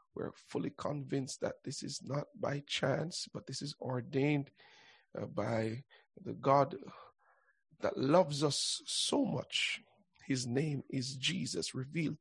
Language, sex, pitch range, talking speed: English, male, 130-165 Hz, 135 wpm